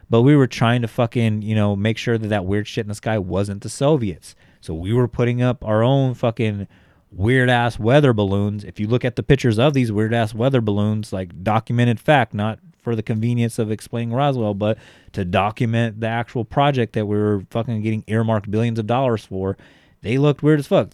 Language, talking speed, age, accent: English, 210 wpm, 30-49, American